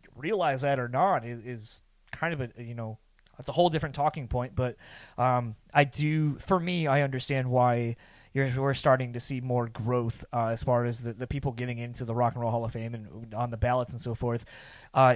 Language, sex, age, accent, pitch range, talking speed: English, male, 20-39, American, 120-140 Hz, 220 wpm